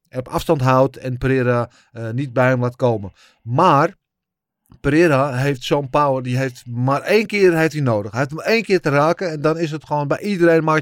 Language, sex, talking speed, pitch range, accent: Dutch, male, 215 wpm, 125-160 Hz, Dutch